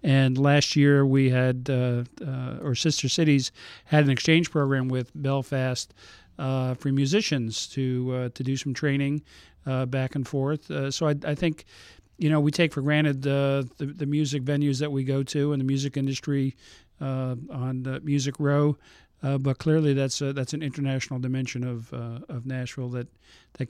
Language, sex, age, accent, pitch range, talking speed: English, male, 50-69, American, 130-145 Hz, 185 wpm